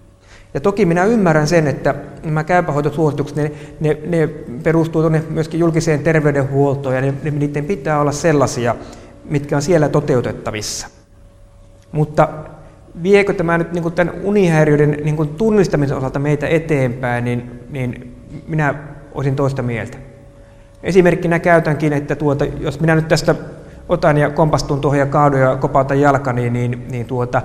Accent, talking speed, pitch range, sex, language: native, 125 wpm, 120-155 Hz, male, Finnish